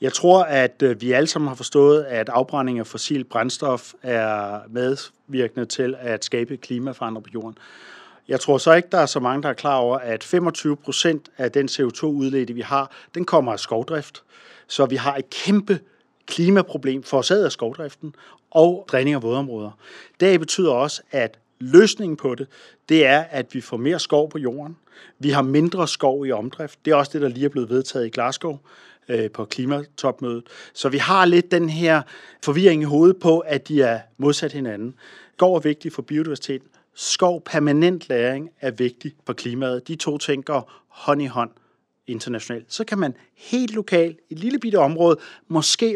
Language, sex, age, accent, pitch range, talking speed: Danish, male, 40-59, native, 125-165 Hz, 180 wpm